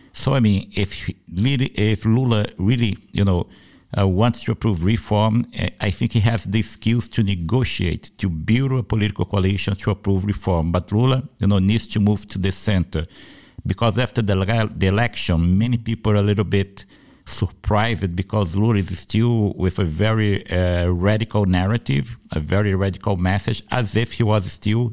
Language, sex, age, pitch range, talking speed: English, male, 60-79, 95-110 Hz, 170 wpm